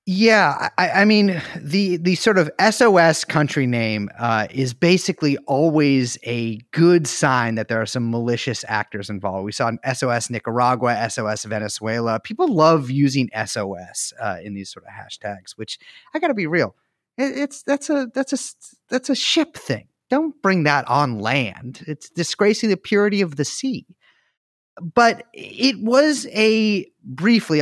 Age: 30-49